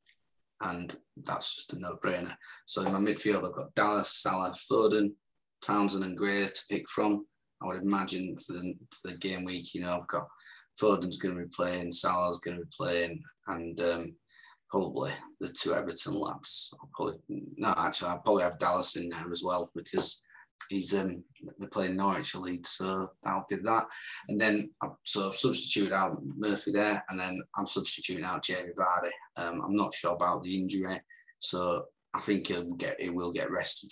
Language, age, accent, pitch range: English, 20-39, British, 90-100 Hz